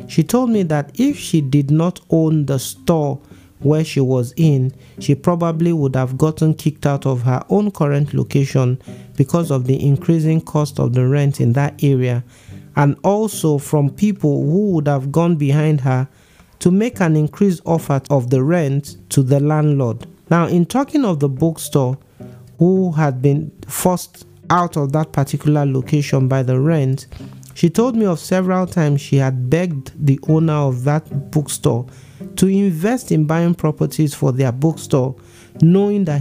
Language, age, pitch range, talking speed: English, 50-69, 135-170 Hz, 165 wpm